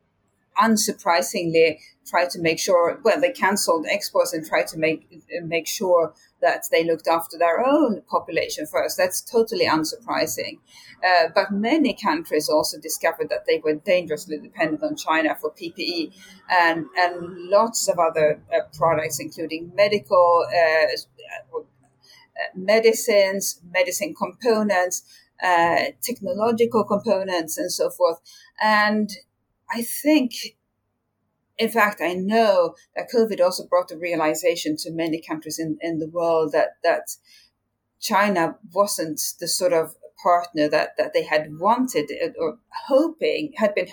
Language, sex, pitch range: English, female, 165-230 Hz